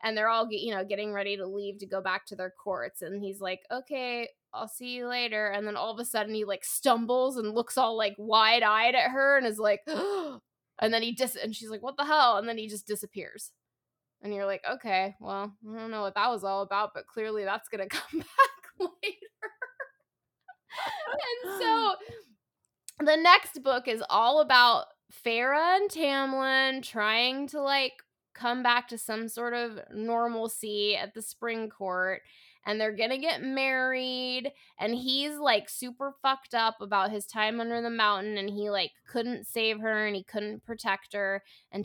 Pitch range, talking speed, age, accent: 195-250 Hz, 195 wpm, 20-39, American